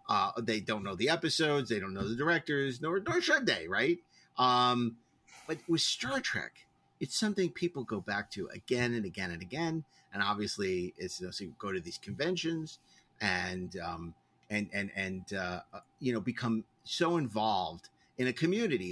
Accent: American